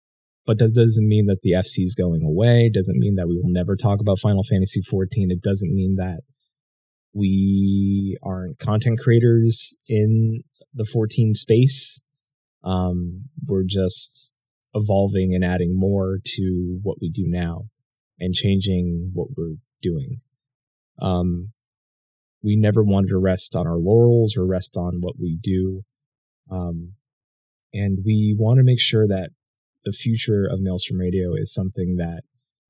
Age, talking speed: 20-39, 150 wpm